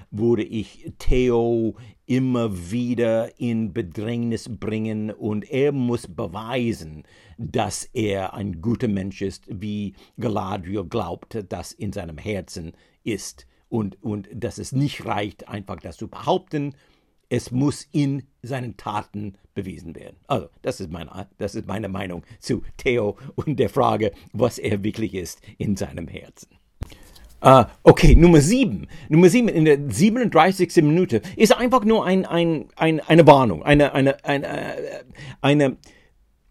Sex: male